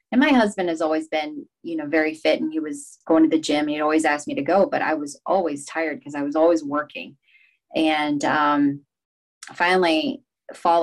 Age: 30-49